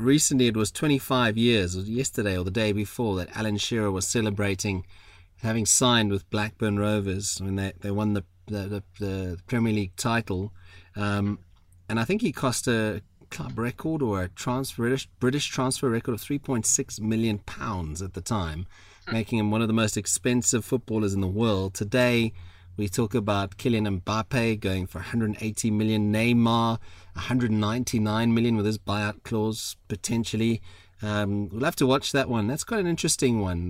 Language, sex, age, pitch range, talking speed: English, male, 30-49, 95-120 Hz, 175 wpm